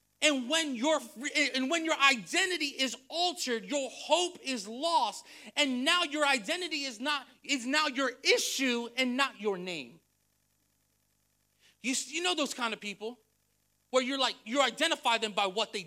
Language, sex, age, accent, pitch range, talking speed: English, male, 30-49, American, 185-300 Hz, 165 wpm